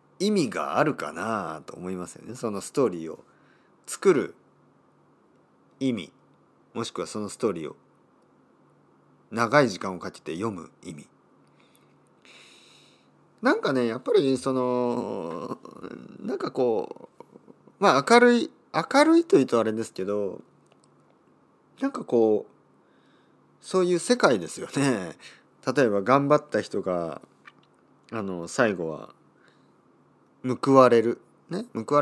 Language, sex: Japanese, male